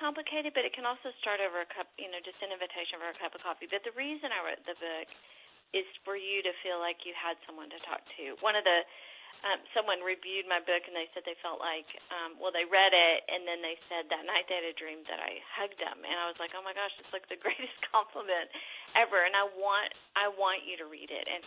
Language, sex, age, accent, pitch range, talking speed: English, female, 40-59, American, 170-215 Hz, 265 wpm